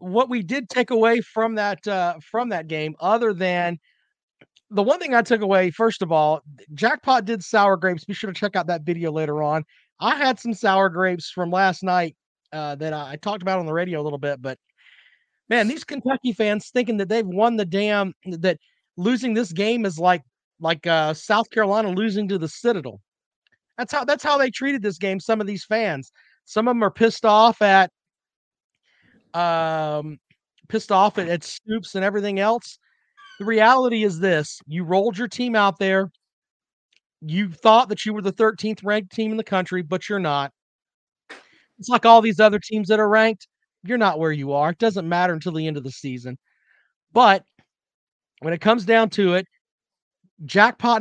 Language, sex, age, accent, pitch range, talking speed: English, male, 40-59, American, 175-225 Hz, 190 wpm